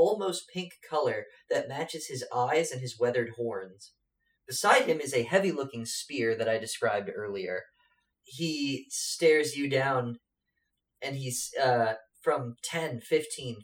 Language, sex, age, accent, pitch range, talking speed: English, male, 30-49, American, 120-185 Hz, 140 wpm